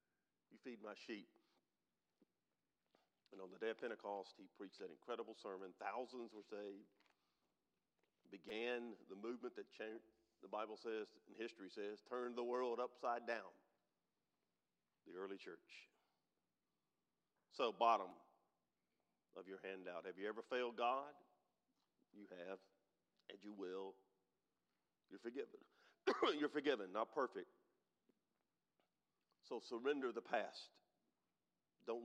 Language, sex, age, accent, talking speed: English, male, 50-69, American, 115 wpm